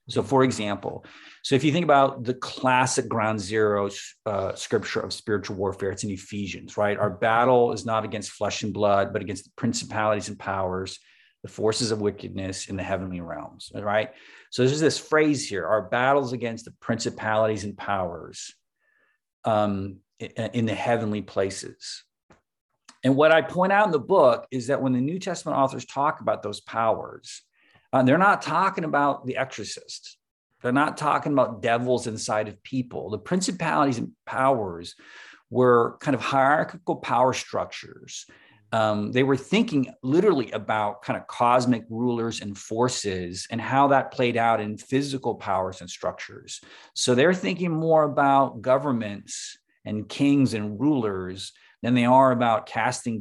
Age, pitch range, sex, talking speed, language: 40-59, 100-130 Hz, male, 160 wpm, English